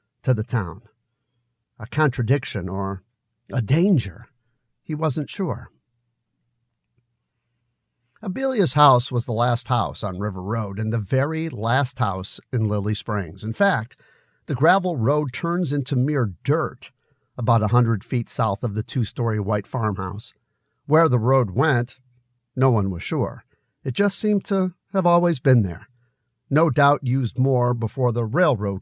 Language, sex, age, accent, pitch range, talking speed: English, male, 50-69, American, 110-135 Hz, 145 wpm